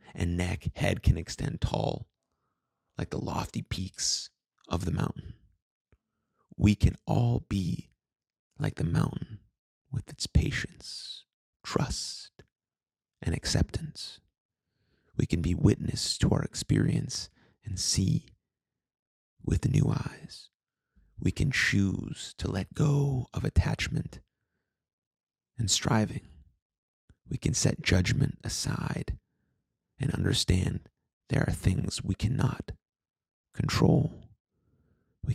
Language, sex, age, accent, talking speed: English, male, 30-49, American, 105 wpm